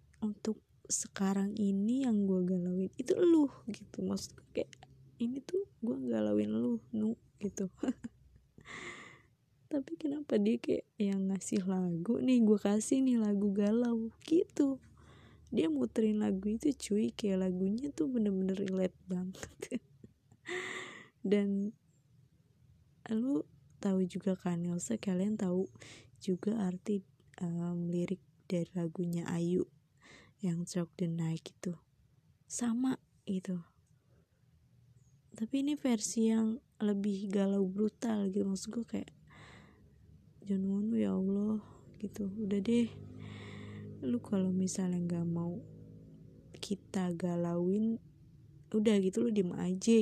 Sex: female